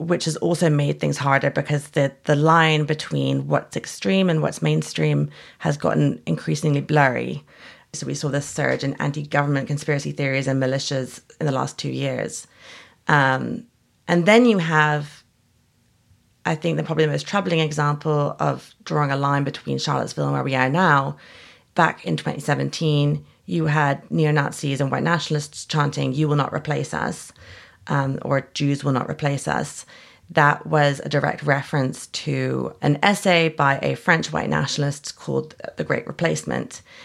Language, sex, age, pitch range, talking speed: English, female, 30-49, 135-155 Hz, 160 wpm